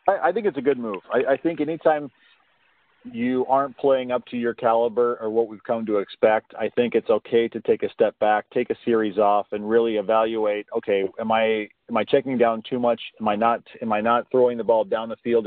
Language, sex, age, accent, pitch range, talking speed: English, male, 40-59, American, 110-130 Hz, 235 wpm